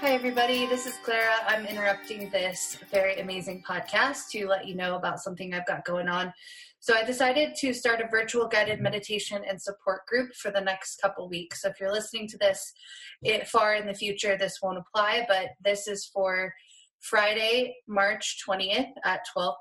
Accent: American